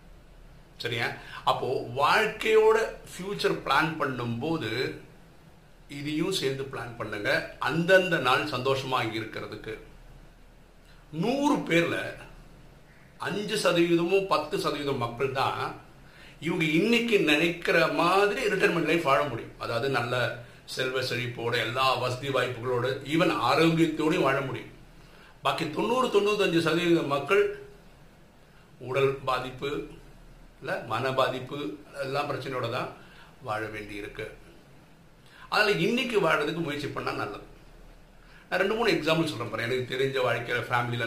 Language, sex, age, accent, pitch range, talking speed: Tamil, male, 50-69, native, 130-170 Hz, 70 wpm